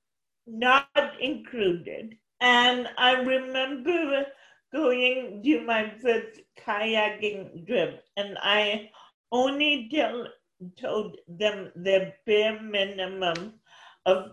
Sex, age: male, 40-59